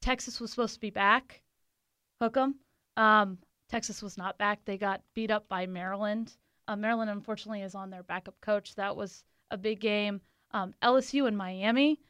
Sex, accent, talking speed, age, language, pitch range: female, American, 180 wpm, 20-39, English, 200-230 Hz